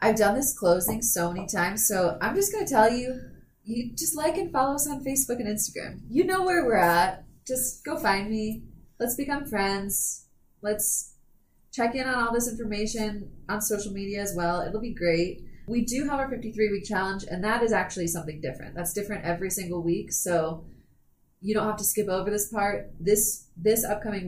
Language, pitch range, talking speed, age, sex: English, 170-215 Hz, 200 wpm, 20-39, female